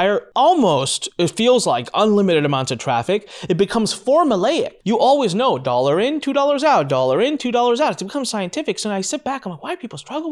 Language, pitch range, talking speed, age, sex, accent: English, 130-215 Hz, 215 wpm, 20-39, male, American